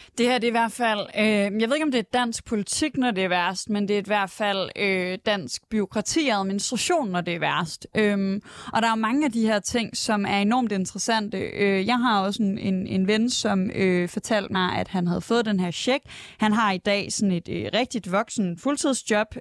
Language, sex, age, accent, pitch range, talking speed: Danish, female, 20-39, native, 195-250 Hz, 235 wpm